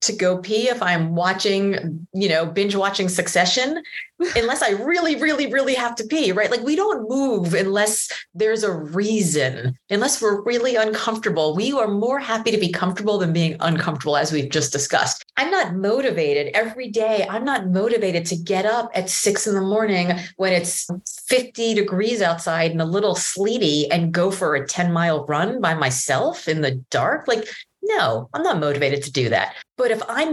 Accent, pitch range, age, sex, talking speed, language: American, 175-250 Hz, 30-49, female, 185 wpm, English